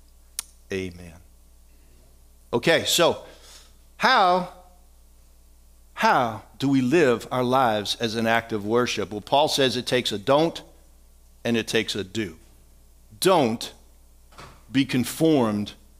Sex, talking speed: male, 115 wpm